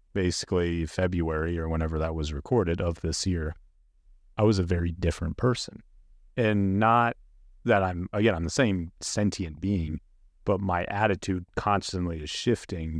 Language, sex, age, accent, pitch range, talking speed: English, male, 30-49, American, 85-105 Hz, 150 wpm